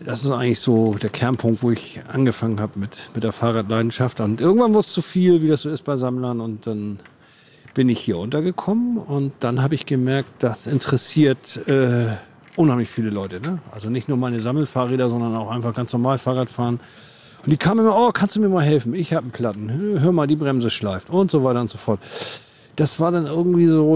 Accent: German